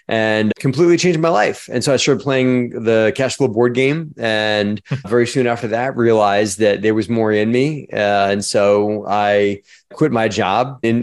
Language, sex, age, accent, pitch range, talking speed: English, male, 30-49, American, 105-120 Hz, 185 wpm